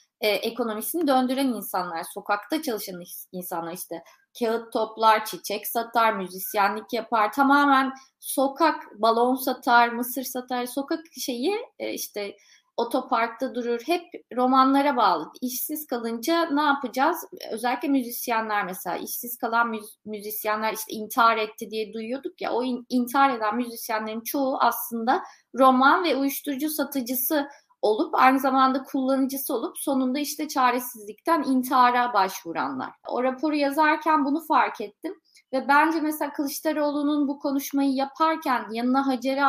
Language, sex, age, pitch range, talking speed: Turkish, female, 30-49, 225-285 Hz, 125 wpm